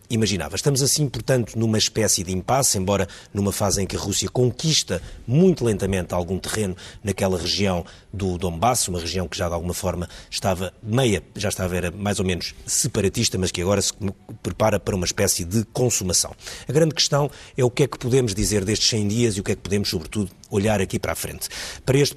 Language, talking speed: Portuguese, 210 wpm